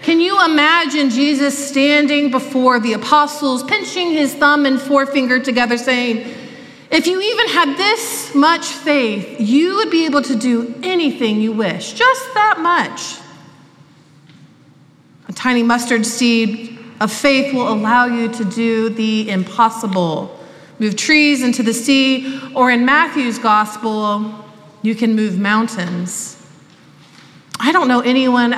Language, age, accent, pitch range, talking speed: English, 40-59, American, 215-285 Hz, 135 wpm